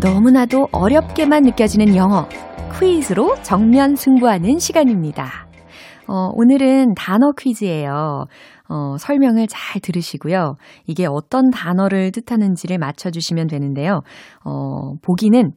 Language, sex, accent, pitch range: Korean, female, native, 150-240 Hz